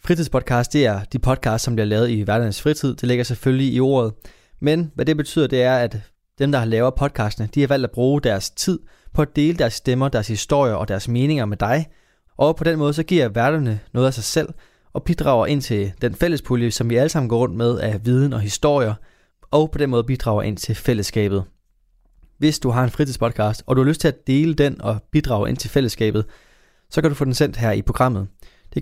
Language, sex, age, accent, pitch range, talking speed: Danish, male, 20-39, native, 110-145 Hz, 230 wpm